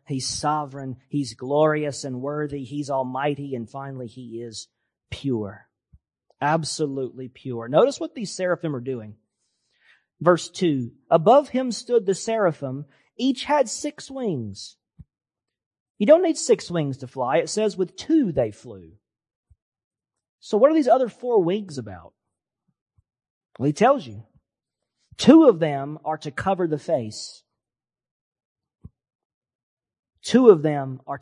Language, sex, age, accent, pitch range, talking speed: English, male, 40-59, American, 125-170 Hz, 135 wpm